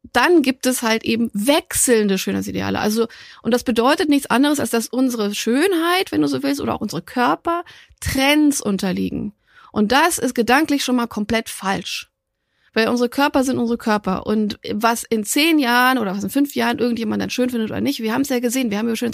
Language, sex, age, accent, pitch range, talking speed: German, female, 30-49, German, 215-255 Hz, 205 wpm